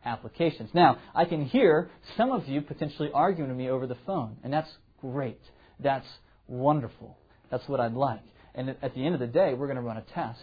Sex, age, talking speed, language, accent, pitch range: male, 30-49, 215 wpm, English, American, 140-190 Hz